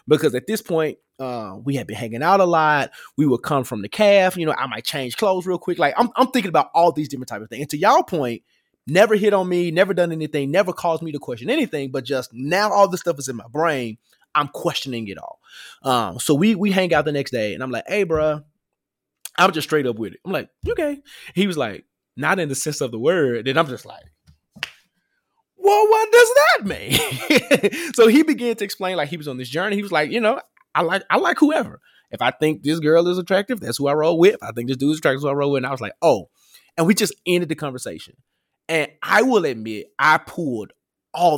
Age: 20-39